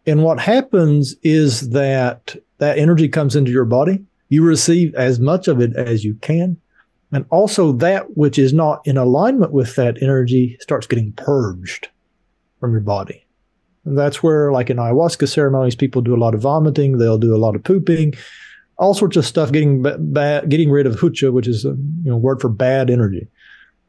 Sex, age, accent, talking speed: male, 40-59, American, 190 wpm